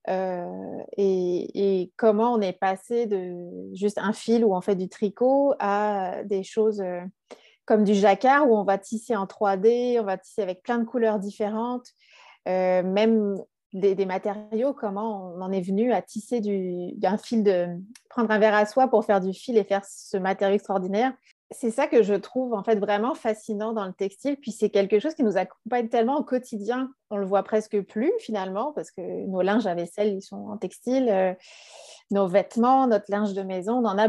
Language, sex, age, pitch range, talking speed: French, female, 30-49, 195-235 Hz, 200 wpm